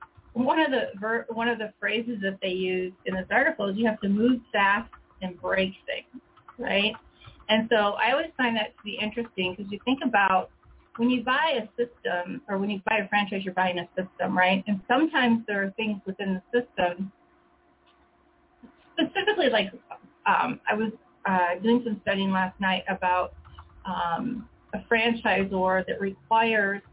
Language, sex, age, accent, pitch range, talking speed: English, female, 30-49, American, 190-235 Hz, 175 wpm